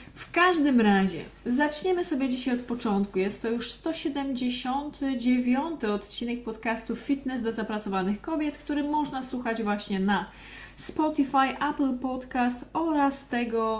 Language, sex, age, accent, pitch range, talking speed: Polish, female, 20-39, native, 215-265 Hz, 120 wpm